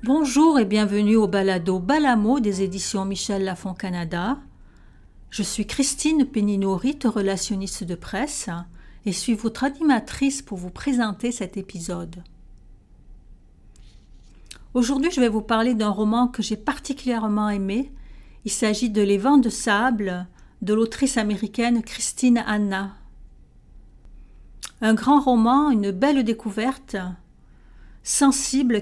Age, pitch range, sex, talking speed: 50-69, 205-255 Hz, female, 125 wpm